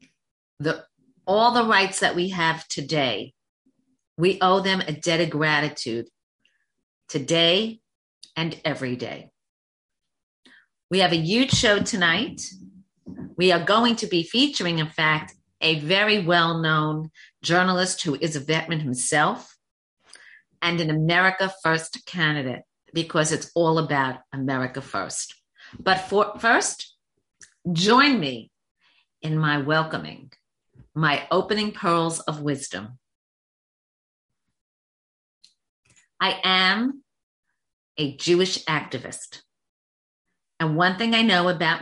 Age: 50-69